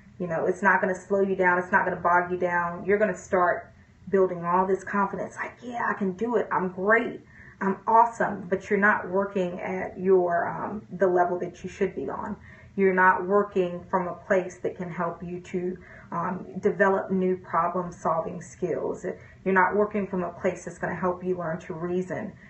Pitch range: 180-200 Hz